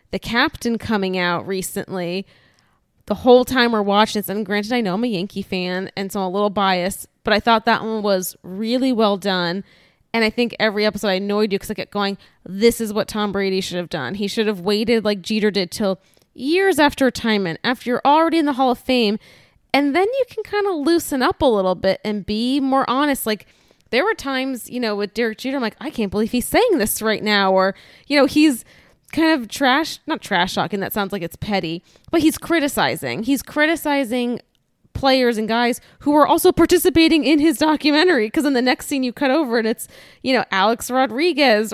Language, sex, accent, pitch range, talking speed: English, female, American, 200-270 Hz, 215 wpm